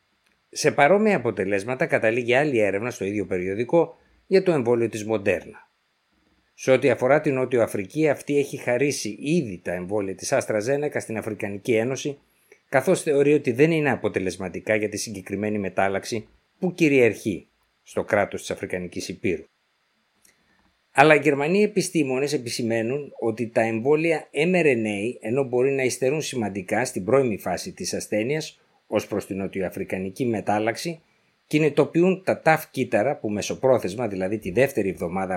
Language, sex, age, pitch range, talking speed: Greek, male, 50-69, 100-150 Hz, 140 wpm